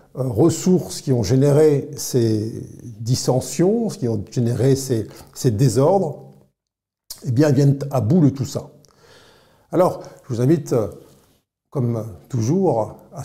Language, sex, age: French, male, 50-69